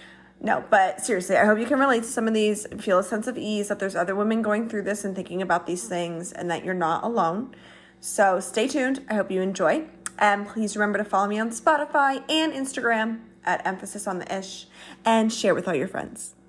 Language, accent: English, American